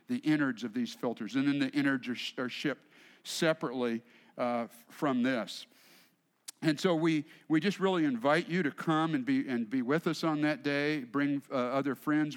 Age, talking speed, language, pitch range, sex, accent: 50-69, 200 wpm, English, 135-185 Hz, male, American